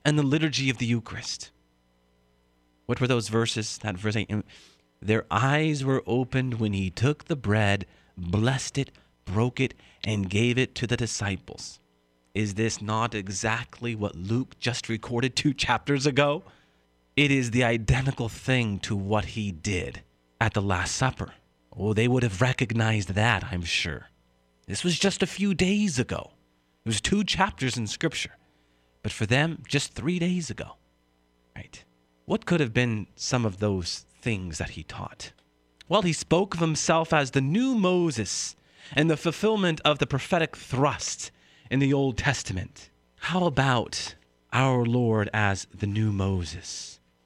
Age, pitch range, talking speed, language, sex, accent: 30-49, 95-135 Hz, 155 wpm, English, male, American